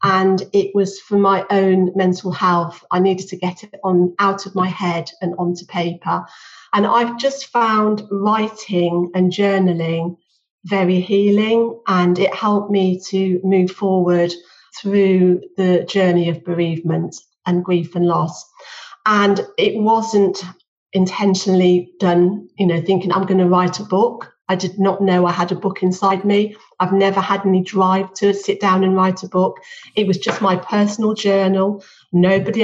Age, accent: 40-59, British